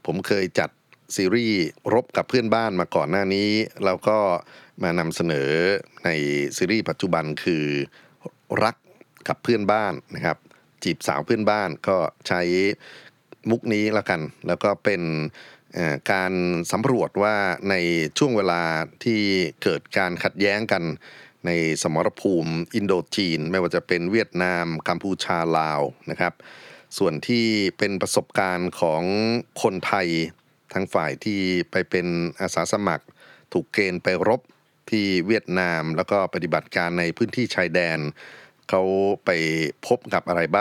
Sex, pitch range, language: male, 85-105 Hz, Thai